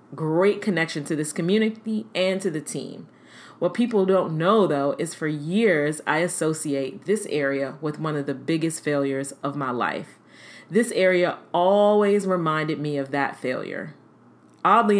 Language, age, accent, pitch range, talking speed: English, 40-59, American, 150-190 Hz, 155 wpm